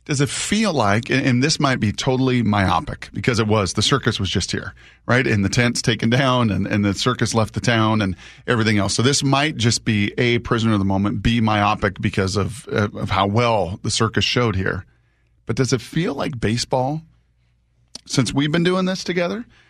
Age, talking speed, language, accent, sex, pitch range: 40-59, 205 wpm, English, American, male, 105-130 Hz